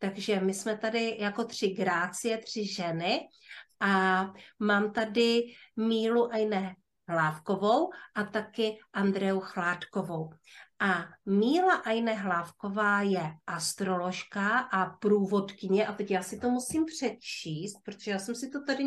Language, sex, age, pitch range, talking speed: Czech, female, 30-49, 190-230 Hz, 125 wpm